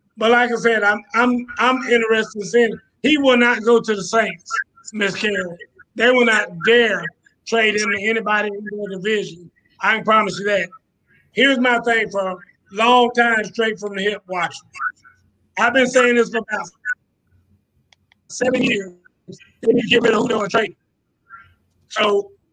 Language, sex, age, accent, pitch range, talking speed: English, male, 30-49, American, 210-255 Hz, 150 wpm